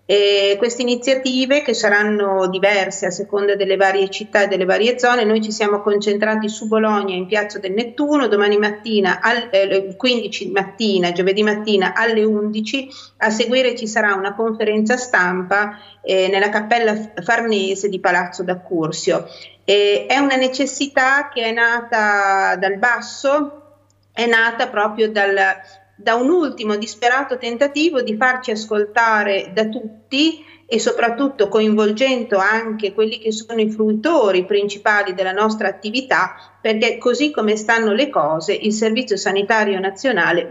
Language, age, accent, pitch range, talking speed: Italian, 40-59, native, 200-240 Hz, 140 wpm